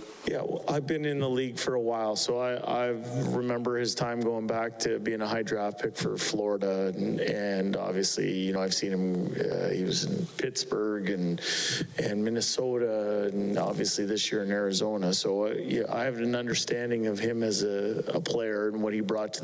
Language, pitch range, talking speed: English, 105-120 Hz, 205 wpm